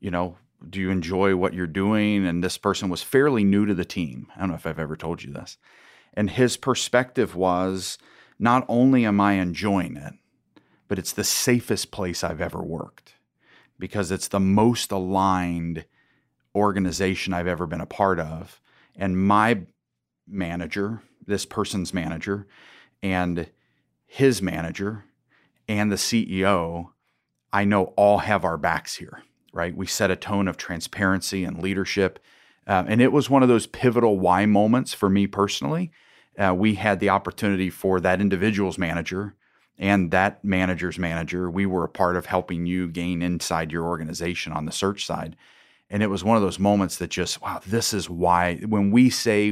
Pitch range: 90-100 Hz